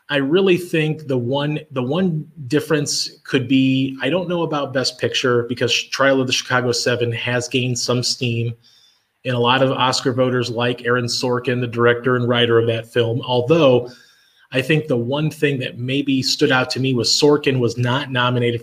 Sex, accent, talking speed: male, American, 190 wpm